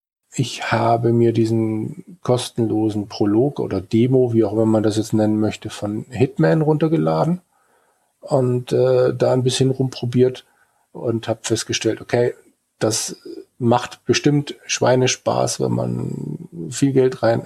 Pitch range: 105-125 Hz